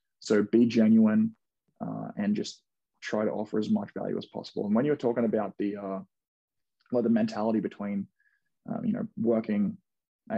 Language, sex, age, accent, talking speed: English, male, 20-39, Australian, 180 wpm